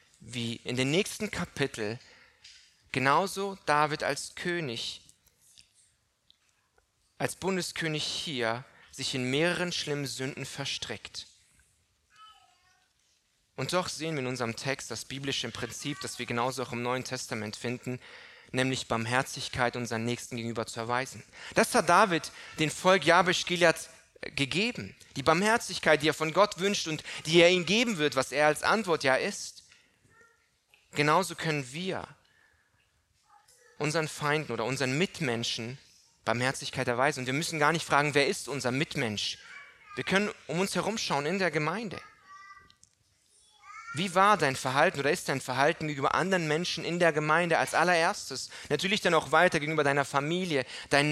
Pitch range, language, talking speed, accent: 130-180 Hz, German, 145 wpm, German